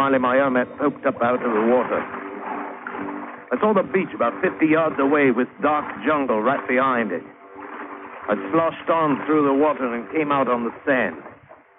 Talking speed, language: 175 wpm, English